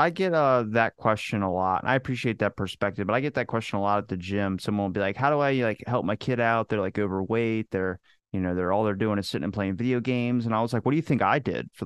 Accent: American